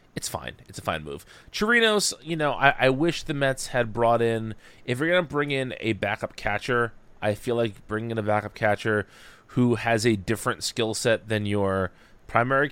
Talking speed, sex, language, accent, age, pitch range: 205 wpm, male, English, American, 30-49, 100-125 Hz